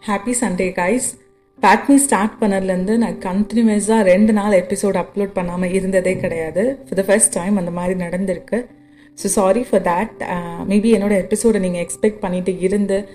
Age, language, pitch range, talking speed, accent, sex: 30-49, Tamil, 180-225 Hz, 155 wpm, native, female